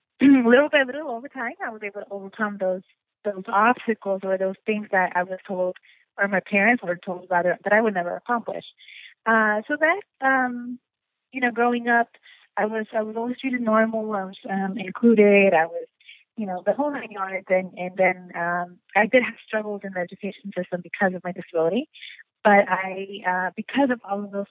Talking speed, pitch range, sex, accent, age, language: 205 wpm, 190-220 Hz, female, American, 20-39, English